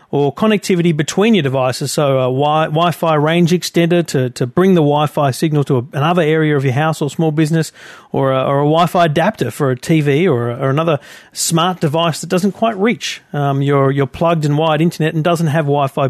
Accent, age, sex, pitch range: Australian, 40-59, male, 140-180 Hz